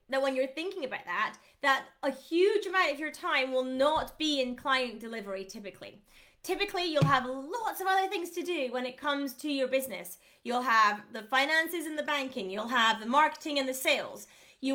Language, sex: English, female